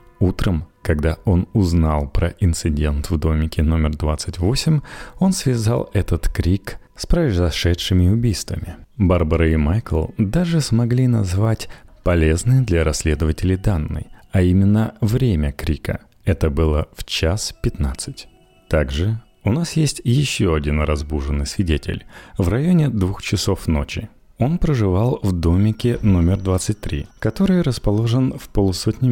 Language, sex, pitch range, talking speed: Russian, male, 80-115 Hz, 120 wpm